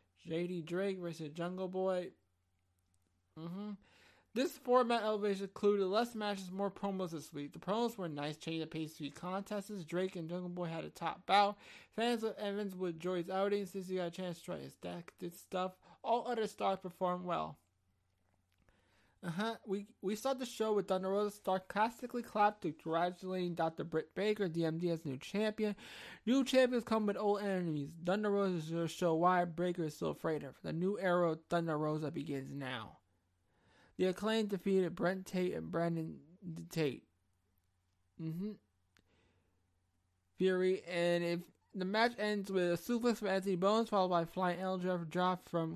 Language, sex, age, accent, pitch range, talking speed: English, male, 20-39, American, 160-200 Hz, 170 wpm